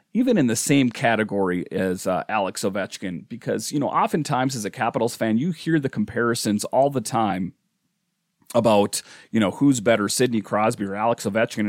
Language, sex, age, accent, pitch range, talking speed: English, male, 40-59, American, 105-130 Hz, 175 wpm